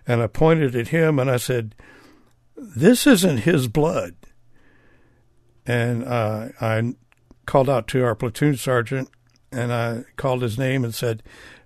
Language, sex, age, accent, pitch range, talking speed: English, male, 60-79, American, 115-130 Hz, 145 wpm